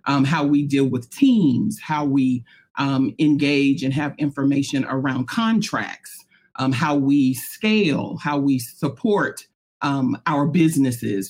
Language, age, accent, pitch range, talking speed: English, 40-59, American, 135-170 Hz, 135 wpm